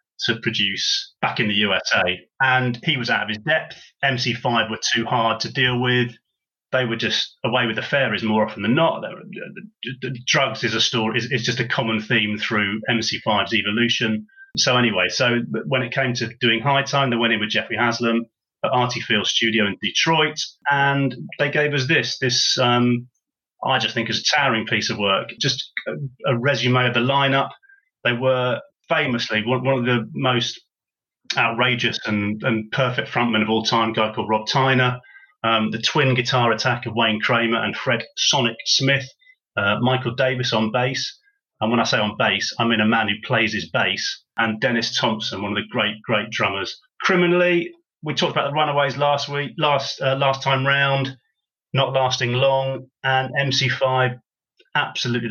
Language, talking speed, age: English, 180 wpm, 30-49